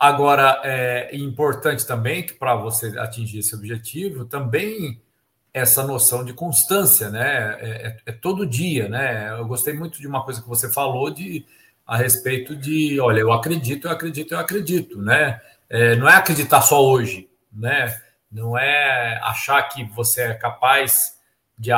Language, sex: Portuguese, male